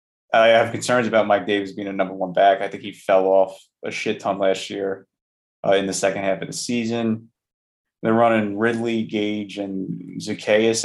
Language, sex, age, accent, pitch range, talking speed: English, male, 30-49, American, 100-115 Hz, 195 wpm